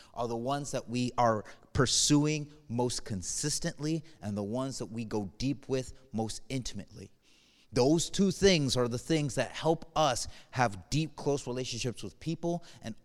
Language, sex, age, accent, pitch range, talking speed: English, male, 30-49, American, 125-170 Hz, 160 wpm